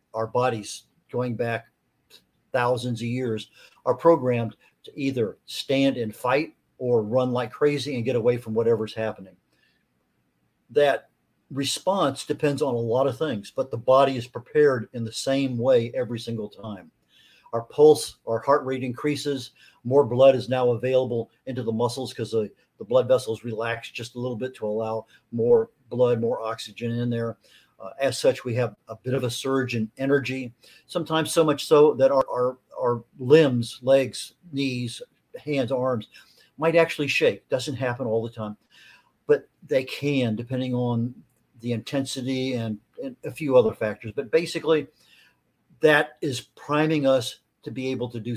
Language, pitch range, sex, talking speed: English, 115-140 Hz, male, 165 wpm